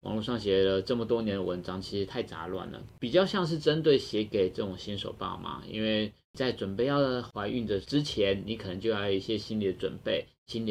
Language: Chinese